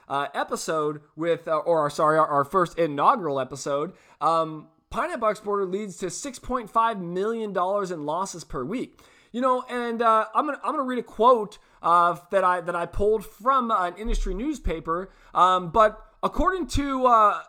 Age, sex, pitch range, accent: 20-39, male, 180-245 Hz, American